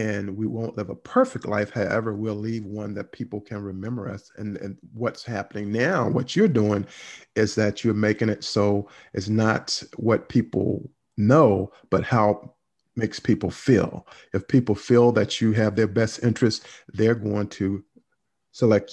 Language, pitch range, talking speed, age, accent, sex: English, 105-125 Hz, 170 wpm, 50-69, American, male